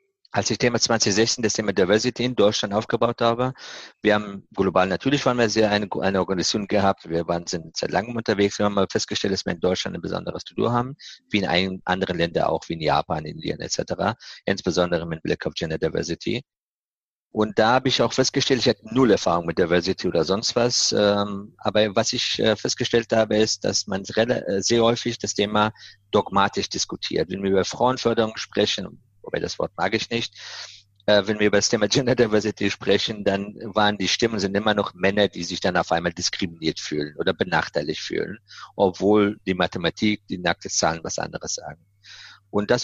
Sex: male